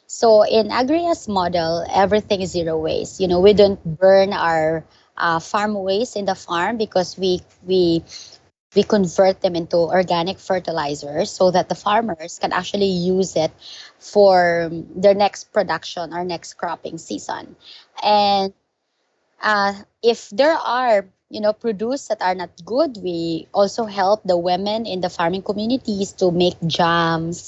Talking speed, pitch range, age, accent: 150 wpm, 170-210 Hz, 20-39, Filipino